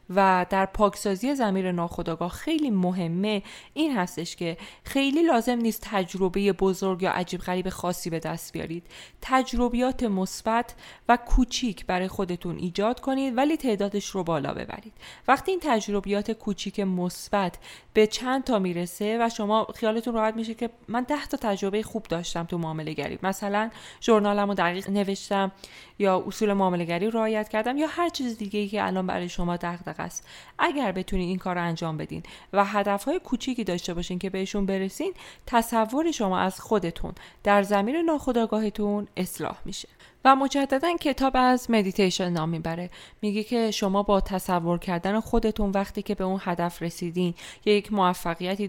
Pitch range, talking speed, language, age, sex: 185-235 Hz, 155 wpm, Persian, 20-39, female